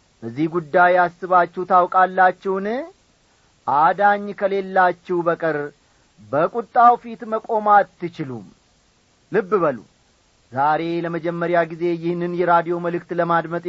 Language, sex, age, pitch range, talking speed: Amharic, male, 40-59, 165-225 Hz, 90 wpm